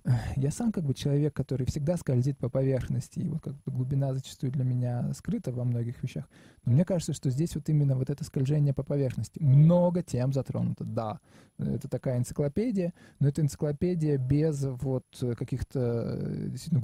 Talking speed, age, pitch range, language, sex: 170 wpm, 20-39, 130-160 Hz, Russian, male